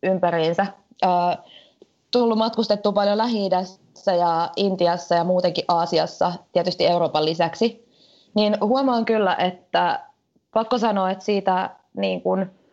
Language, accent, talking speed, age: Finnish, native, 115 wpm, 20-39